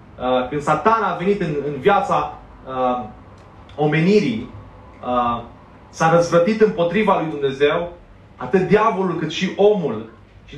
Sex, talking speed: male, 120 wpm